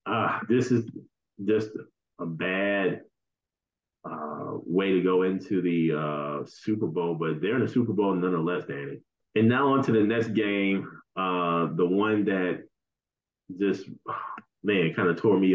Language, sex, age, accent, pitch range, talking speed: English, male, 30-49, American, 90-110 Hz, 155 wpm